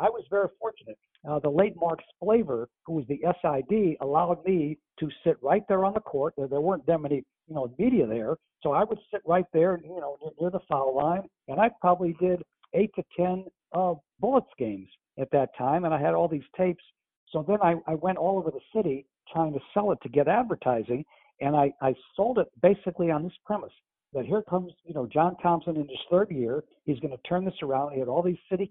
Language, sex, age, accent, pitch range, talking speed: English, male, 60-79, American, 150-190 Hz, 230 wpm